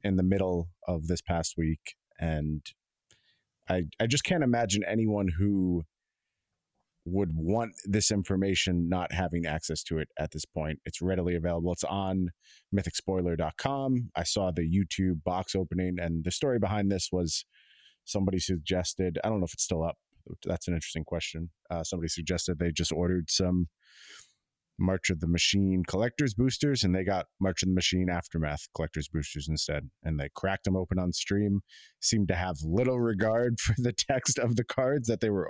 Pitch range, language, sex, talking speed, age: 85-100 Hz, English, male, 175 wpm, 30-49